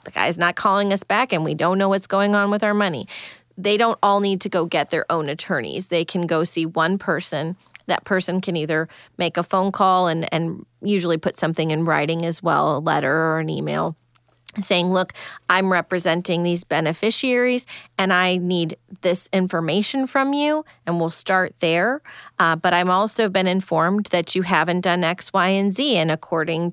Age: 30-49